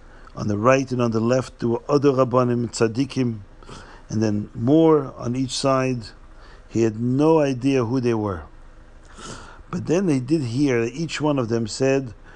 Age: 50-69